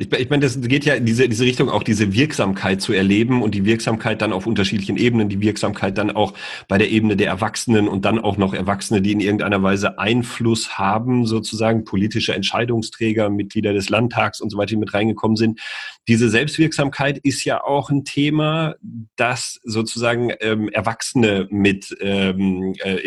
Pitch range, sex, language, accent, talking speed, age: 105-130 Hz, male, German, German, 175 wpm, 40-59